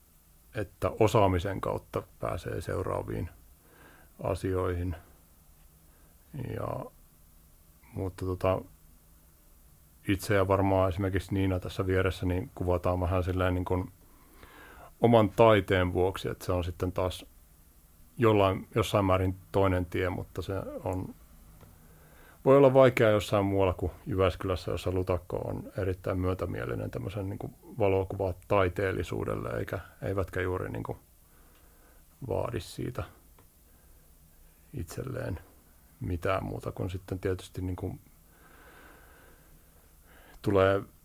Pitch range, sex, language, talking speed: 80-100 Hz, male, Finnish, 100 wpm